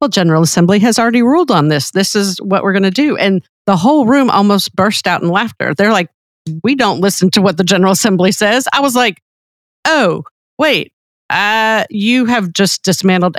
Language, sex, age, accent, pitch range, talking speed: English, female, 50-69, American, 160-195 Hz, 200 wpm